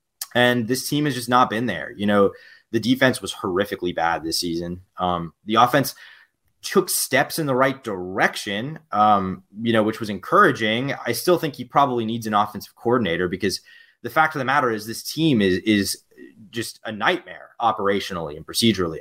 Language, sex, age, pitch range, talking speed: English, male, 20-39, 105-135 Hz, 185 wpm